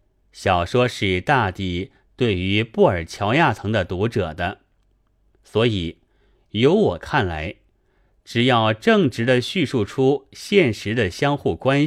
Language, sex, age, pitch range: Chinese, male, 30-49, 90-130 Hz